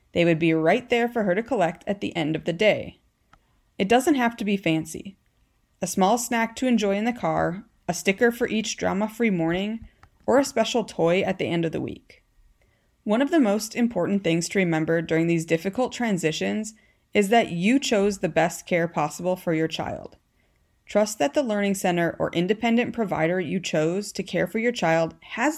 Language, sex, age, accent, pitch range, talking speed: English, female, 30-49, American, 165-215 Hz, 195 wpm